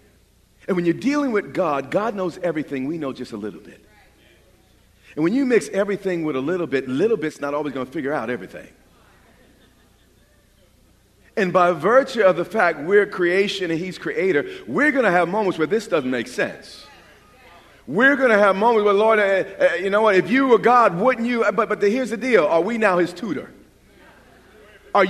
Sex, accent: male, American